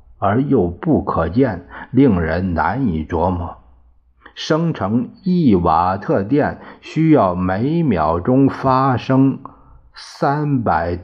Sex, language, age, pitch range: male, Chinese, 50-69, 85-135 Hz